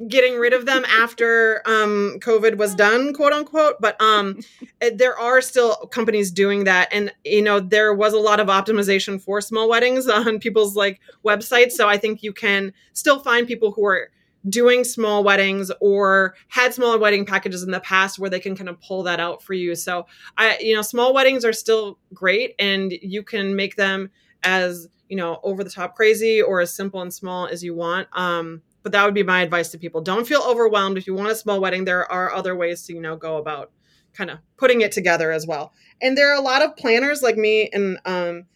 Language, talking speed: English, 220 wpm